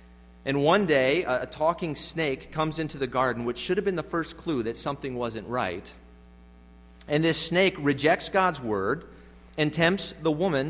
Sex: male